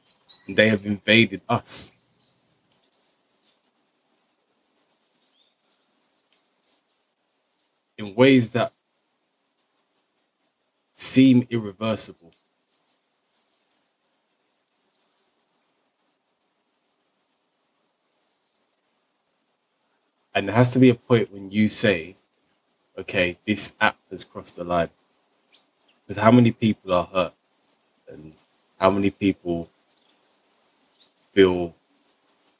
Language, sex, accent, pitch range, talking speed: English, male, American, 95-115 Hz, 70 wpm